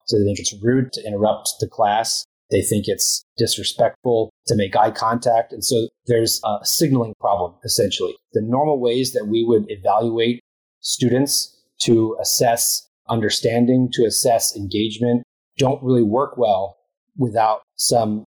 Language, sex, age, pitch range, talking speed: English, male, 30-49, 105-125 Hz, 145 wpm